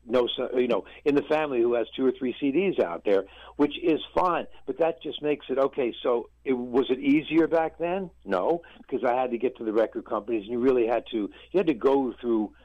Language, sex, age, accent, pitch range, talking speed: English, male, 60-79, American, 100-140 Hz, 235 wpm